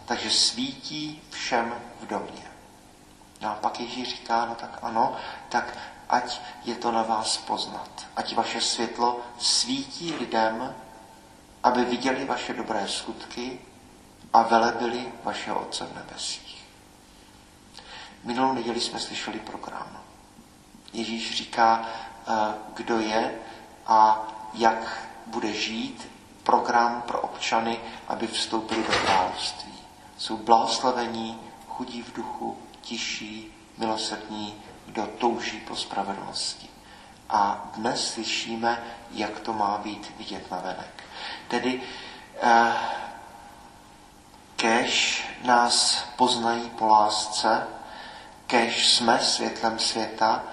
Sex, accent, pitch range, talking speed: male, native, 110-120 Hz, 105 wpm